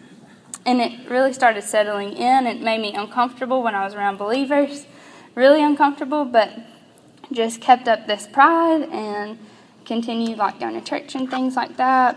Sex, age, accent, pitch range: female, 10-29, American, 205-240 Hz